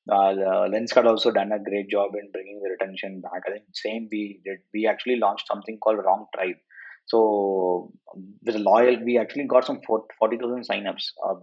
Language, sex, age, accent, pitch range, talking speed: English, male, 20-39, Indian, 100-125 Hz, 185 wpm